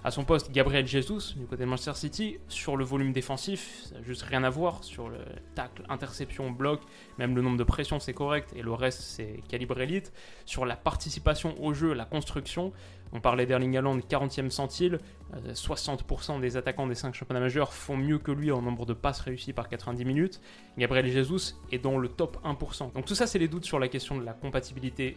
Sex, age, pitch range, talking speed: male, 20-39, 125-150 Hz, 215 wpm